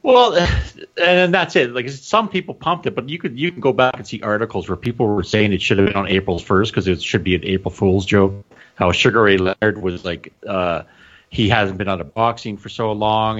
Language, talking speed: English, 240 wpm